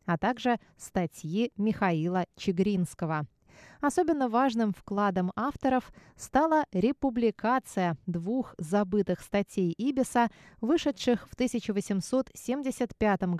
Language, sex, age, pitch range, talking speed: Russian, female, 20-39, 180-245 Hz, 80 wpm